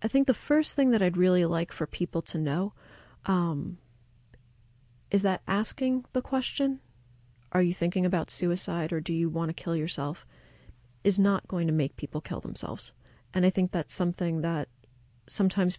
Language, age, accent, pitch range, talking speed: English, 30-49, American, 150-185 Hz, 175 wpm